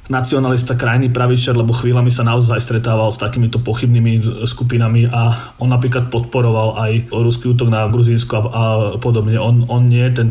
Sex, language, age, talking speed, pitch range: male, Slovak, 30-49, 155 wpm, 120-130 Hz